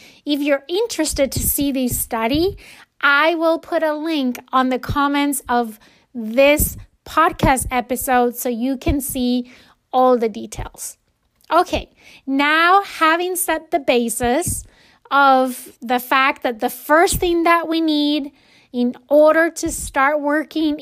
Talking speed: 135 wpm